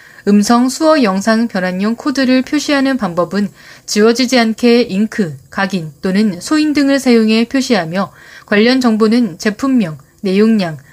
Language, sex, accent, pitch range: Korean, female, native, 190-255 Hz